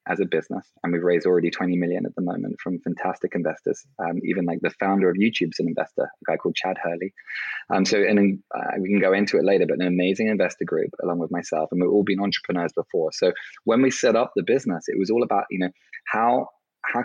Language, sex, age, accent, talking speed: English, male, 20-39, British, 240 wpm